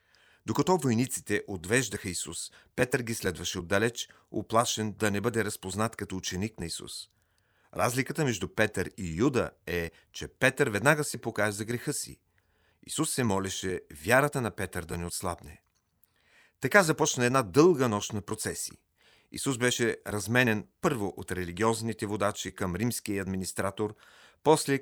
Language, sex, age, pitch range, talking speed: Bulgarian, male, 40-59, 95-125 Hz, 140 wpm